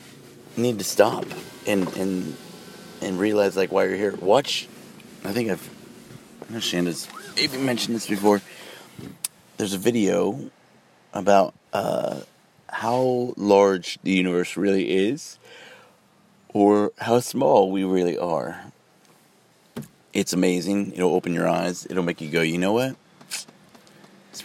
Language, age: English, 30-49